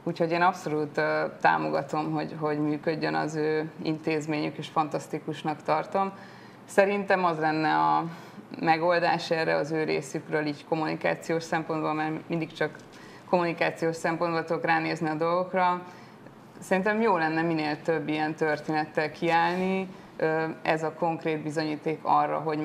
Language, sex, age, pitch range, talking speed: Hungarian, female, 20-39, 155-175 Hz, 125 wpm